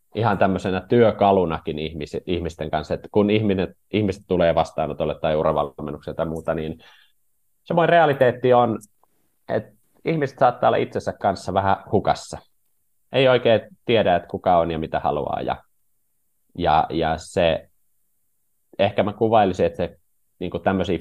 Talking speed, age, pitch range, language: 135 wpm, 30-49, 80-100 Hz, Finnish